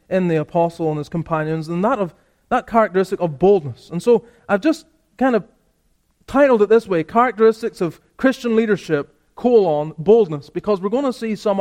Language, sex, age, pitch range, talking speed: English, male, 30-49, 170-220 Hz, 180 wpm